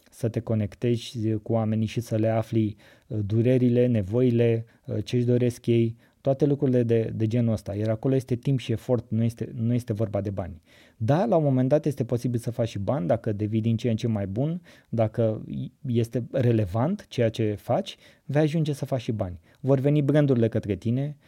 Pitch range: 110-125 Hz